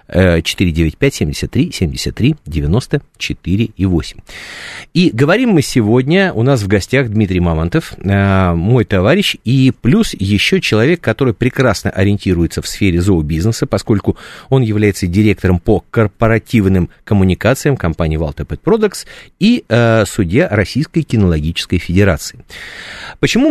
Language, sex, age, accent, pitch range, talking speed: Russian, male, 50-69, native, 90-125 Hz, 95 wpm